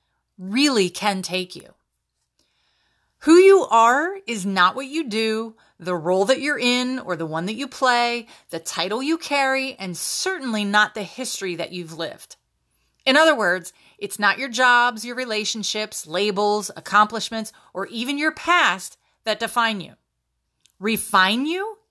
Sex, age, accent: female, 30-49, American